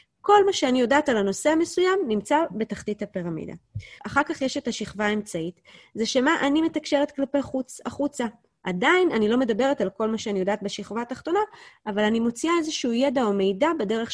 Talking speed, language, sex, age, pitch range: 185 wpm, Hebrew, female, 20-39, 205-280 Hz